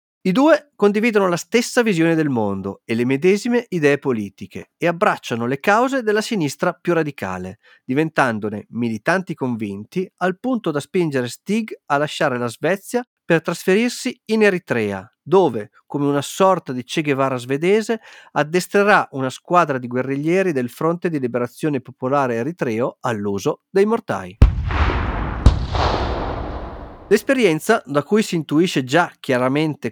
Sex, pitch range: male, 120-195 Hz